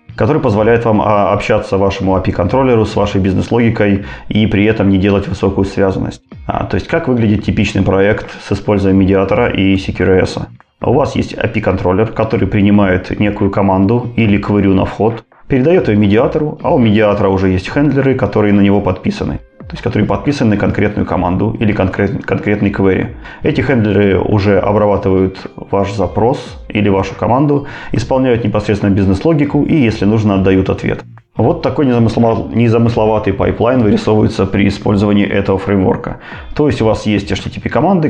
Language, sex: Russian, male